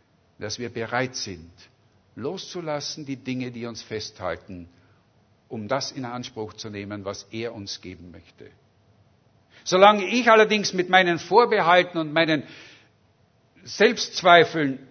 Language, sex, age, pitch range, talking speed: German, male, 60-79, 110-175 Hz, 120 wpm